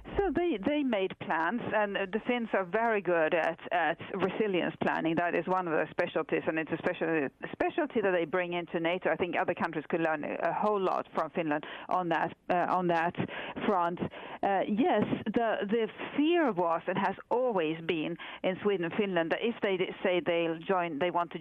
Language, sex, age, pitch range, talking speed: English, female, 50-69, 170-220 Hz, 200 wpm